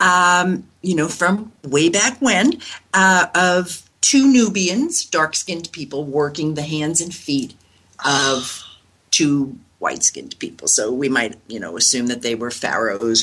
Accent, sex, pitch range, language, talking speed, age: American, female, 140-185 Hz, English, 145 wpm, 50-69